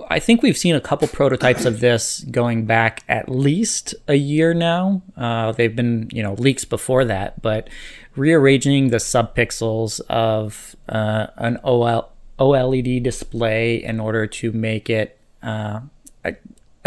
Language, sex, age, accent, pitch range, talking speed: English, male, 20-39, American, 115-130 Hz, 145 wpm